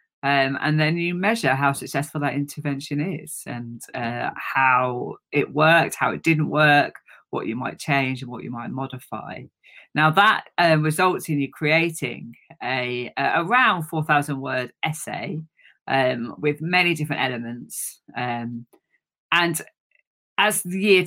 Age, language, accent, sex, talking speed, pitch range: 40-59, English, British, female, 145 wpm, 130-160 Hz